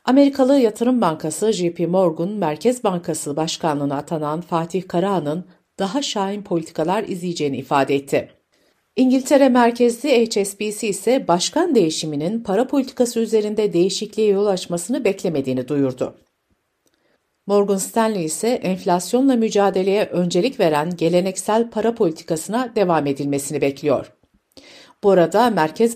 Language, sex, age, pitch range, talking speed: Turkish, female, 60-79, 165-235 Hz, 110 wpm